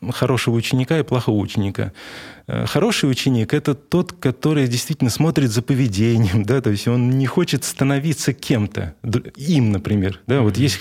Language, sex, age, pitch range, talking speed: Russian, male, 20-39, 110-135 Hz, 140 wpm